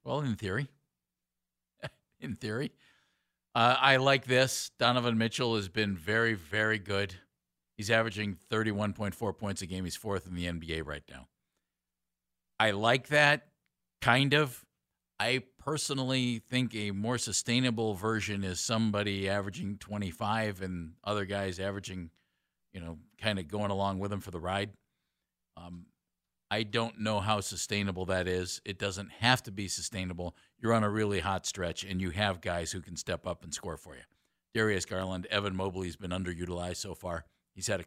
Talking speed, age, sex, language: 165 wpm, 50-69, male, English